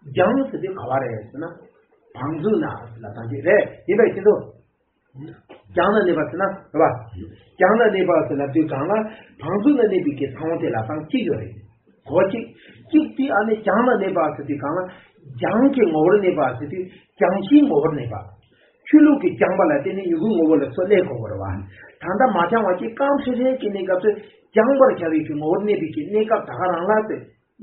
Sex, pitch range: male, 150-250 Hz